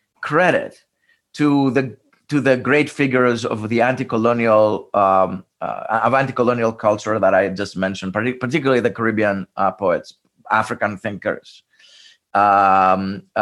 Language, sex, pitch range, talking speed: English, male, 115-145 Hz, 125 wpm